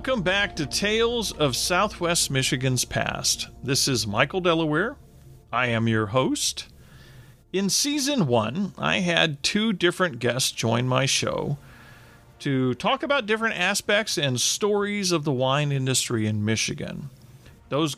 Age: 40-59